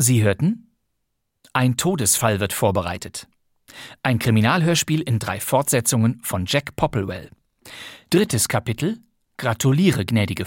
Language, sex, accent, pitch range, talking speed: German, male, German, 115-150 Hz, 105 wpm